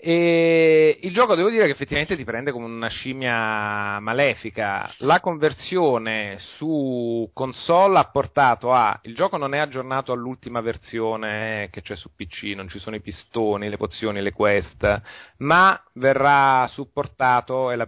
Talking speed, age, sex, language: 150 wpm, 30-49, male, Italian